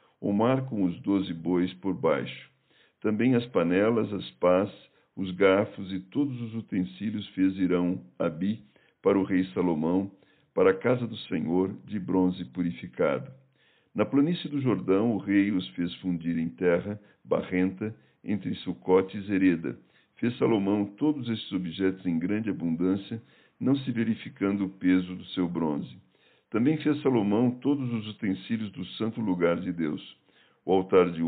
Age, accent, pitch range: 60-79, Brazilian, 90-110 Hz